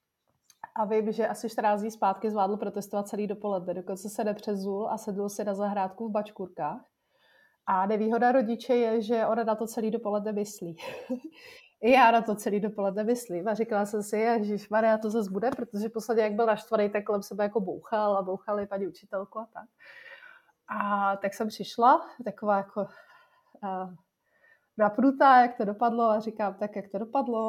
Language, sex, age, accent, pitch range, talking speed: Czech, female, 30-49, native, 205-235 Hz, 175 wpm